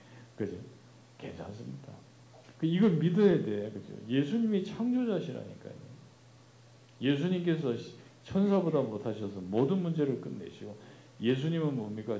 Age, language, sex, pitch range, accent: 50-69, Korean, male, 105-150 Hz, native